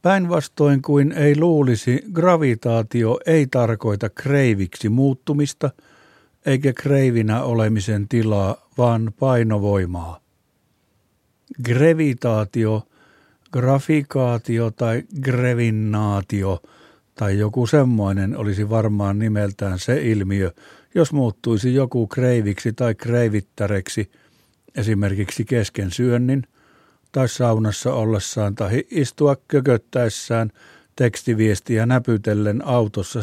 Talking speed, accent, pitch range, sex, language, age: 80 wpm, native, 105-135 Hz, male, Finnish, 60-79